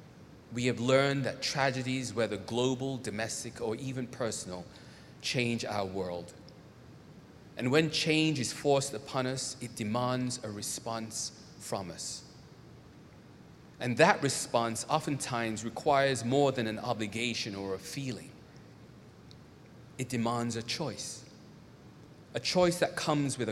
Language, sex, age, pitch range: English, male, 30-49, 110-140 Hz